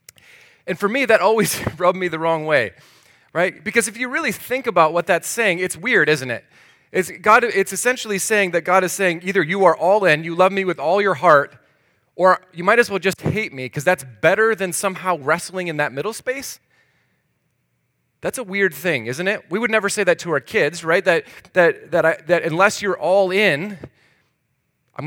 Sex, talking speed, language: male, 210 wpm, English